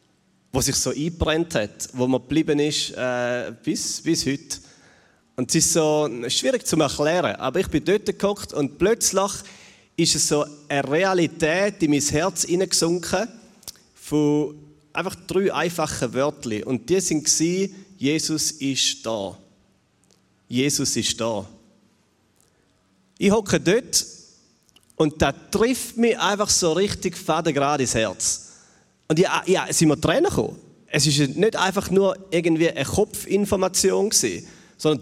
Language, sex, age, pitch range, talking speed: German, male, 30-49, 135-180 Hz, 135 wpm